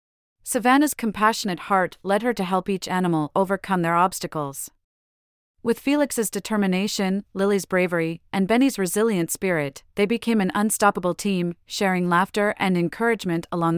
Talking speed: 135 wpm